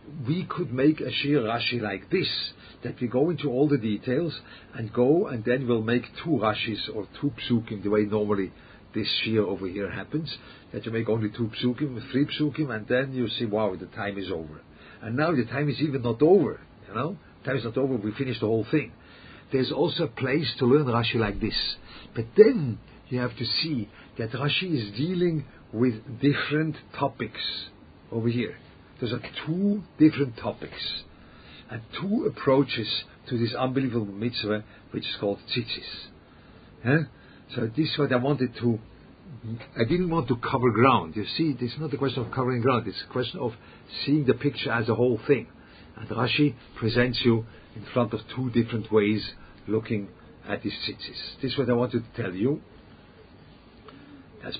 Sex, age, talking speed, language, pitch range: male, 50-69, 185 wpm, English, 110-135 Hz